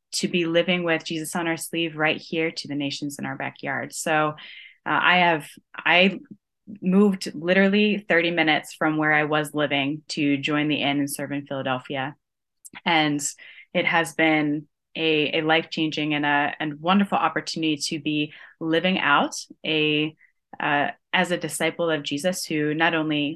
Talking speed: 165 wpm